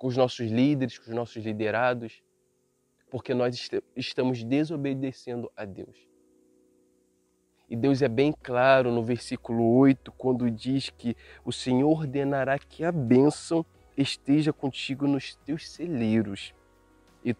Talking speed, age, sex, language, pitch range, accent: 130 wpm, 20-39, male, Portuguese, 115-155 Hz, Brazilian